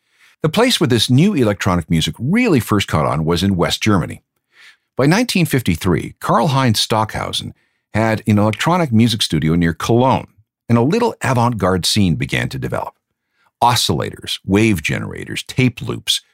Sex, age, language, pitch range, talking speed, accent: male, 50-69, English, 95-130 Hz, 150 wpm, American